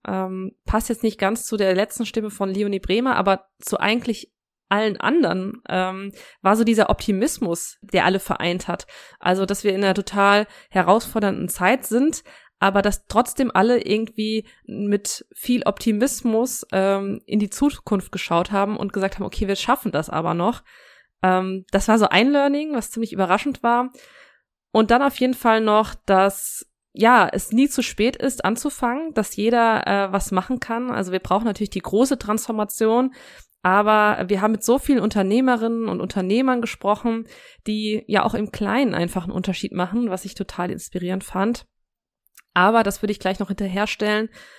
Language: German